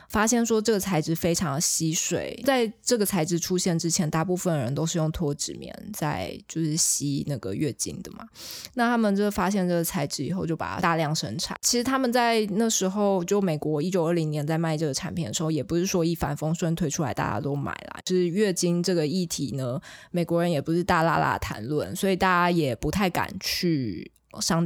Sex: female